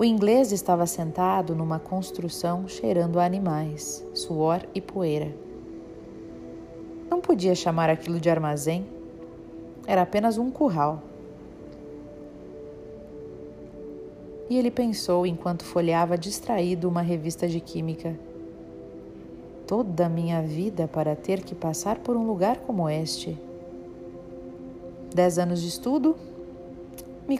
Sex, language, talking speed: female, Portuguese, 110 wpm